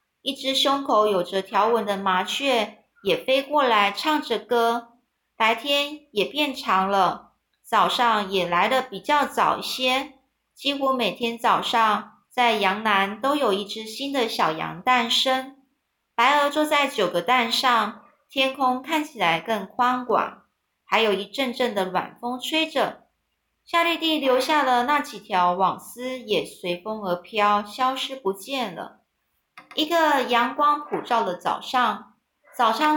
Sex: female